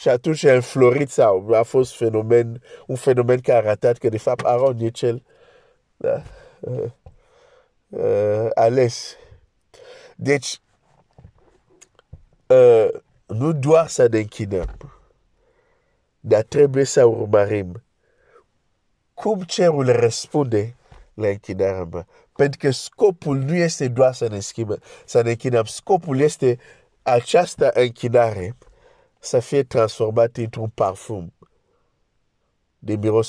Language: Romanian